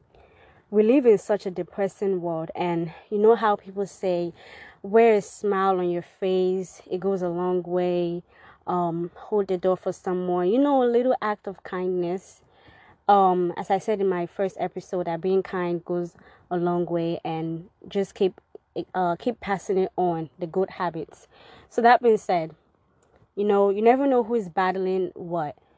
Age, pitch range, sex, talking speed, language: 20-39, 180-220 Hz, female, 180 wpm, English